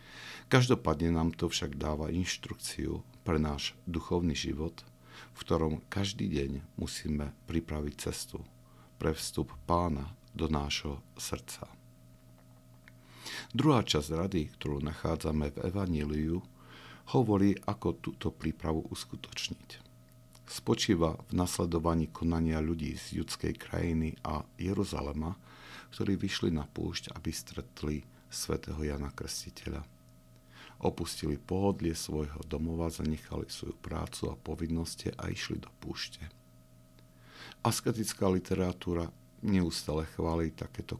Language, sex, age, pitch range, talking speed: Slovak, male, 50-69, 70-90 Hz, 105 wpm